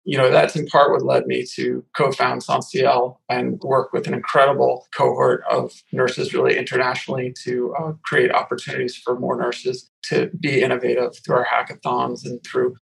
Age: 40-59